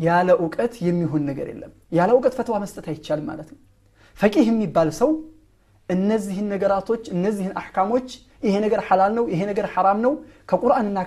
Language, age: Amharic, 30-49